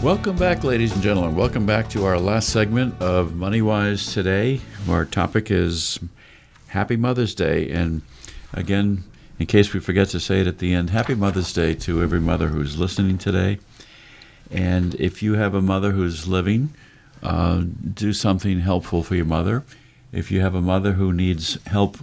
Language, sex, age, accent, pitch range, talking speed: English, male, 50-69, American, 85-110 Hz, 175 wpm